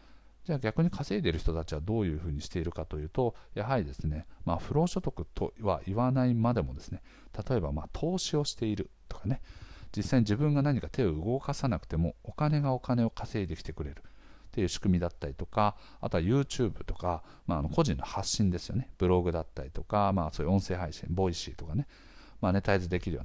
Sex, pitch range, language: male, 85-120 Hz, Japanese